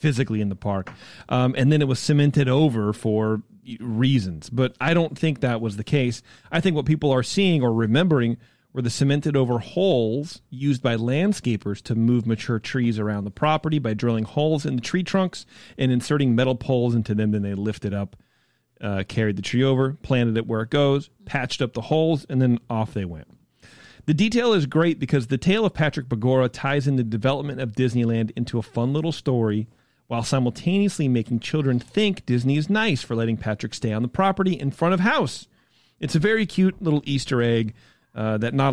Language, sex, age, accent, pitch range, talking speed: English, male, 40-59, American, 115-150 Hz, 200 wpm